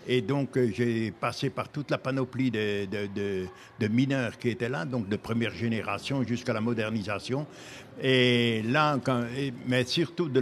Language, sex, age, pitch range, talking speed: French, male, 60-79, 115-130 Hz, 175 wpm